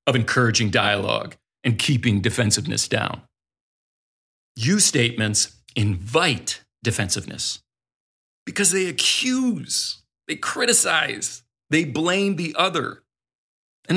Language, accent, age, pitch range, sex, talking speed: English, American, 40-59, 115-180 Hz, male, 90 wpm